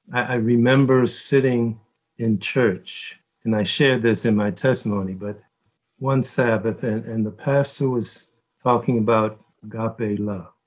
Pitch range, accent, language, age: 110-140 Hz, American, English, 60-79